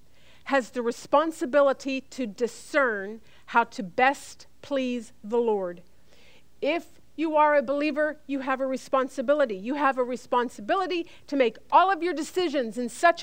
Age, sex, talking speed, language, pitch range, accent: 50-69, female, 145 wpm, English, 240-285 Hz, American